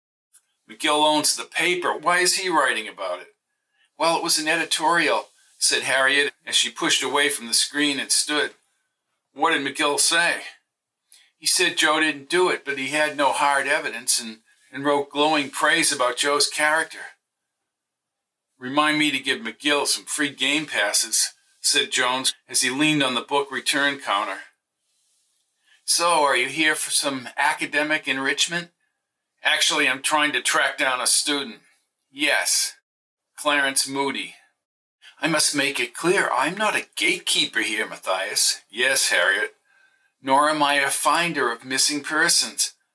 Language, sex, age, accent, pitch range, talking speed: English, male, 50-69, American, 135-155 Hz, 150 wpm